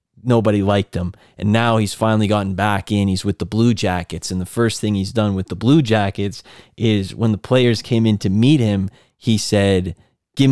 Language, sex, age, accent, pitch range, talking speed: English, male, 20-39, American, 100-120 Hz, 210 wpm